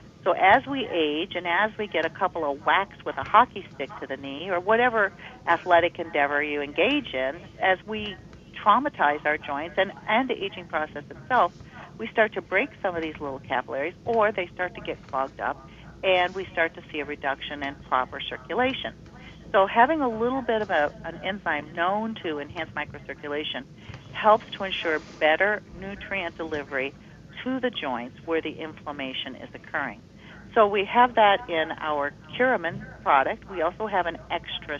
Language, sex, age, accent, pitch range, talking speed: English, female, 50-69, American, 150-200 Hz, 180 wpm